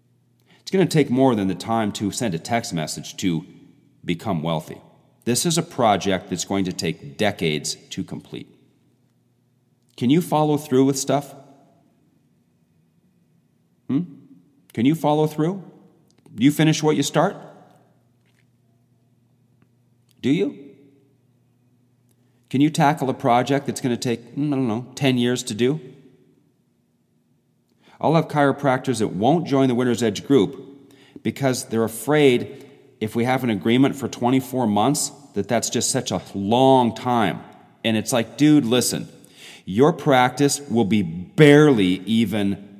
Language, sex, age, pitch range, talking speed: English, male, 40-59, 110-140 Hz, 140 wpm